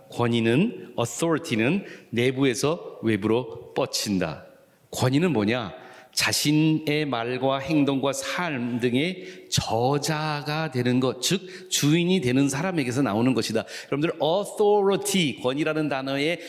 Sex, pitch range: male, 105-150 Hz